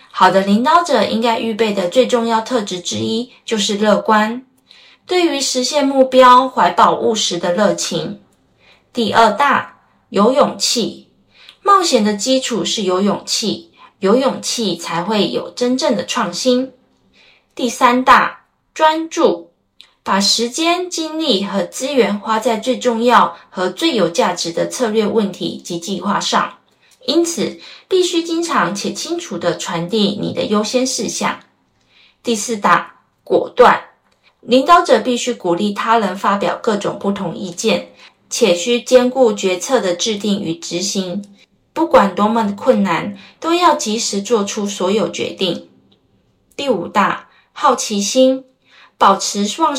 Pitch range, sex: 200-260 Hz, female